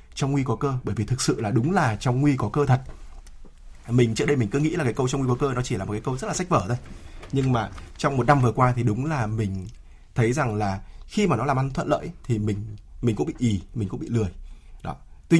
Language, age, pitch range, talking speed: Vietnamese, 20-39, 105-145 Hz, 285 wpm